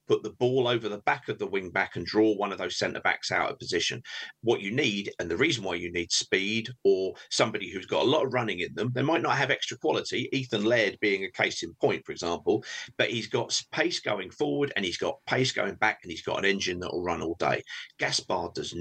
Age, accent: 50-69, British